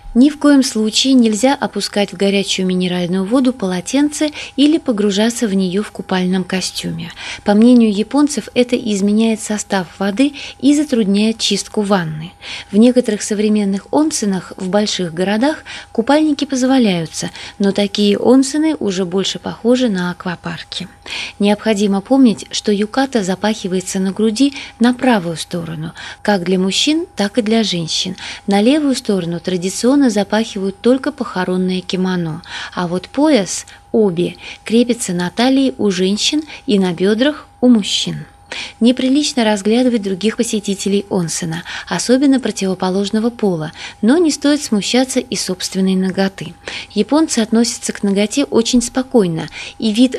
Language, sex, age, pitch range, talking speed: Russian, female, 20-39, 185-245 Hz, 130 wpm